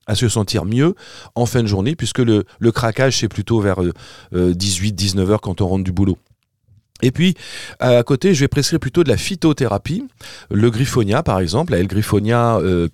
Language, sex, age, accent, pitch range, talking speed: French, male, 40-59, French, 100-130 Hz, 190 wpm